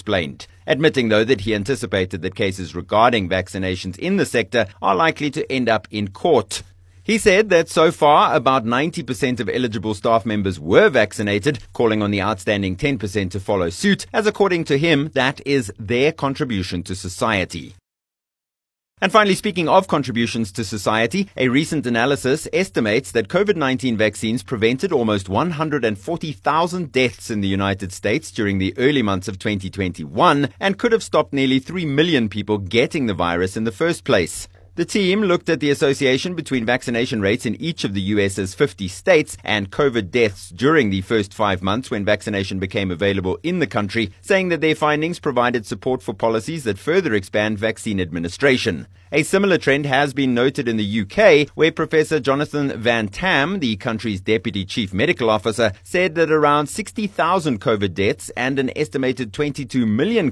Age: 30-49